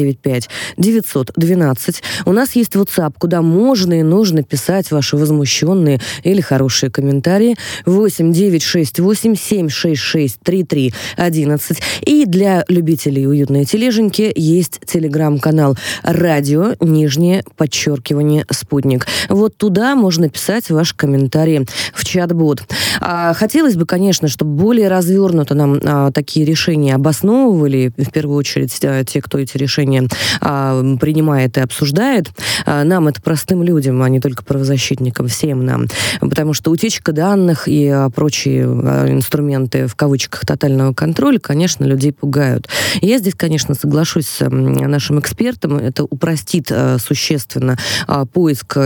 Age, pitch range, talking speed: 20-39, 135-175 Hz, 125 wpm